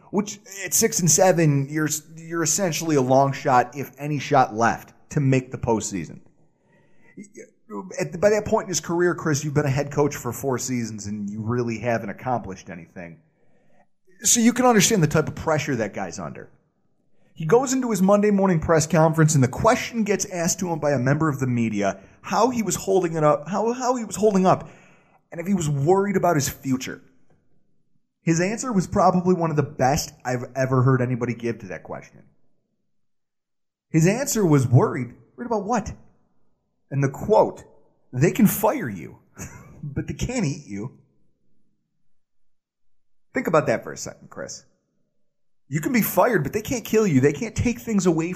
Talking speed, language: 185 wpm, English